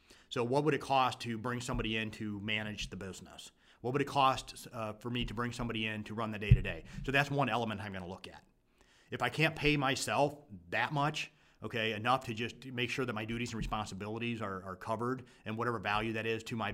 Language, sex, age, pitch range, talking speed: English, male, 30-49, 110-135 Hz, 235 wpm